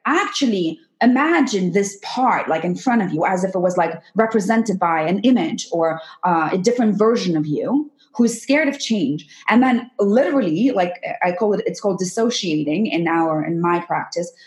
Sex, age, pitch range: female, 20-39, 190-270 Hz